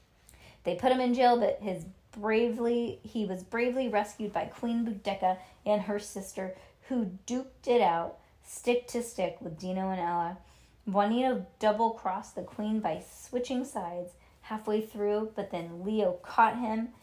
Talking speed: 150 wpm